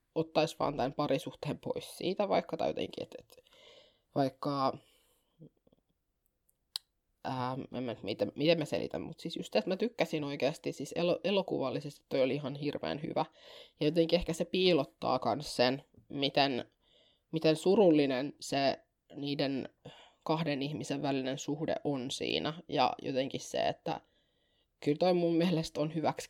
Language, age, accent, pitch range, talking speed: Finnish, 20-39, native, 135-160 Hz, 135 wpm